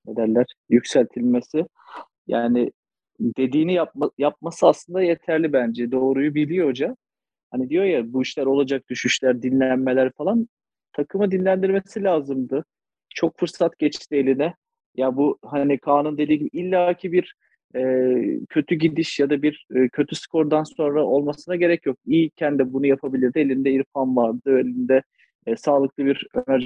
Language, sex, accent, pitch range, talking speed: Turkish, male, native, 130-165 Hz, 135 wpm